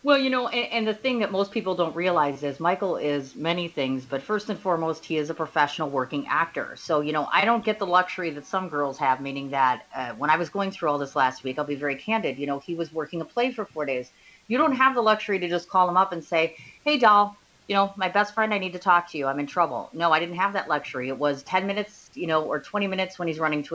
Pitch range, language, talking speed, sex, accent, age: 145-200 Hz, English, 285 wpm, female, American, 30-49